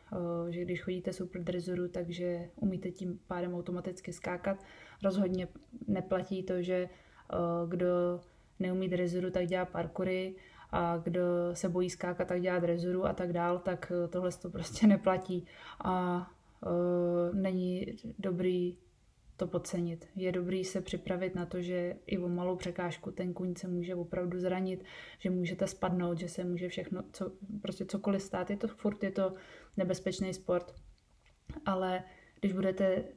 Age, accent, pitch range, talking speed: 20-39, native, 180-190 Hz, 145 wpm